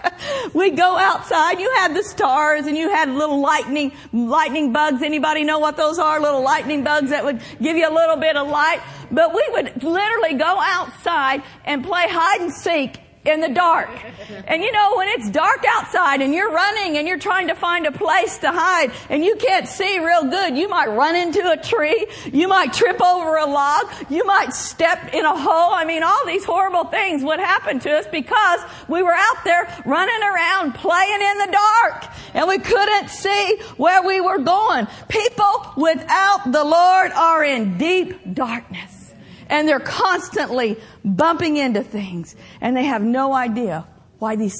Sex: female